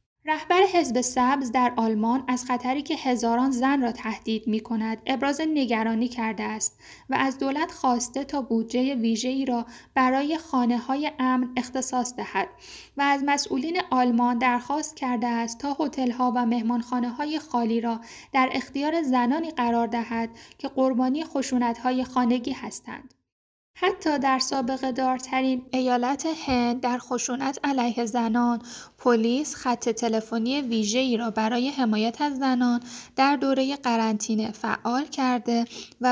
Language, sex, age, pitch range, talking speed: Persian, female, 10-29, 235-270 Hz, 140 wpm